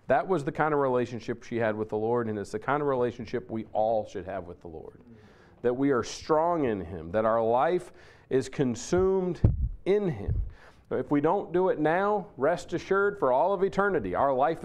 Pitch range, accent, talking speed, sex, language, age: 115-160 Hz, American, 210 wpm, male, English, 40-59